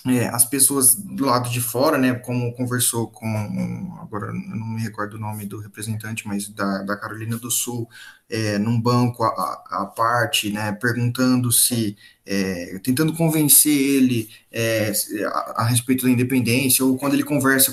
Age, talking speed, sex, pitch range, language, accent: 20-39, 150 wpm, male, 110-130 Hz, Portuguese, Brazilian